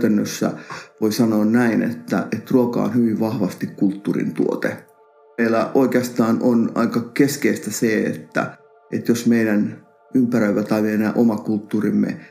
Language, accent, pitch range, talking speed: Finnish, native, 105-125 Hz, 125 wpm